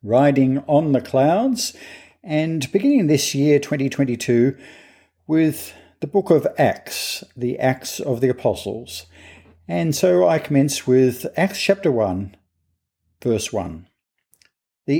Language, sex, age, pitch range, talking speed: English, male, 50-69, 110-155 Hz, 110 wpm